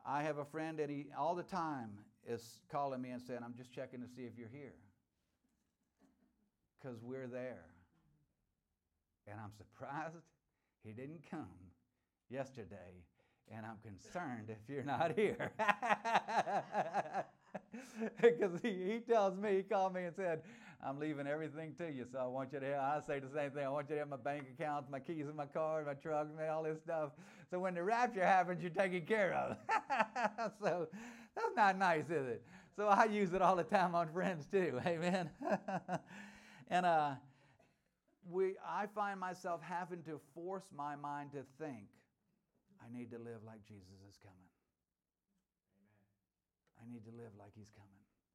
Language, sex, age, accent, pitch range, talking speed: English, male, 50-69, American, 120-185 Hz, 170 wpm